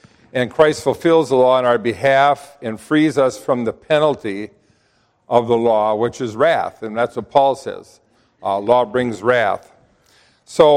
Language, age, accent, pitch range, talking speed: English, 50-69, American, 120-155 Hz, 165 wpm